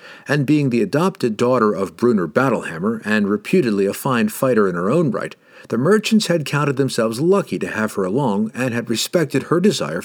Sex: male